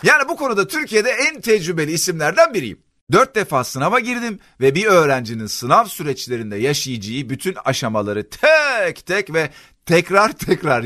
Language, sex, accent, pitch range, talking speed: Turkish, male, native, 120-195 Hz, 140 wpm